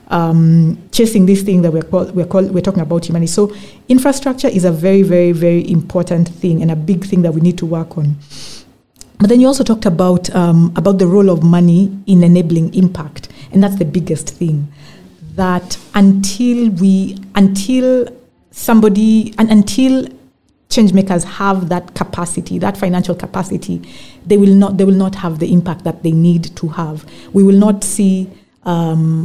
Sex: female